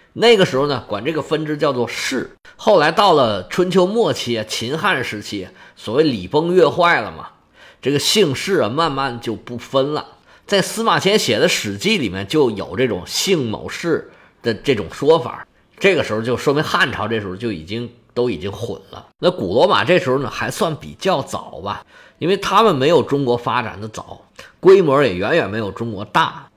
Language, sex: Chinese, male